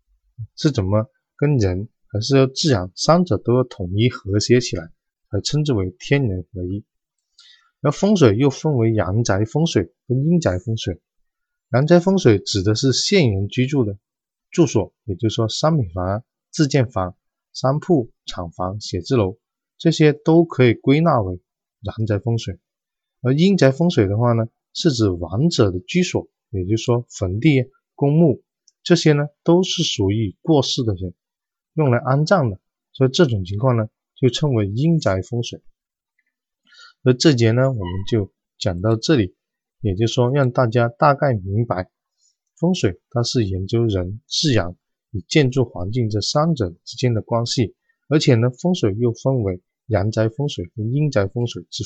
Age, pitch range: 20-39, 105-145 Hz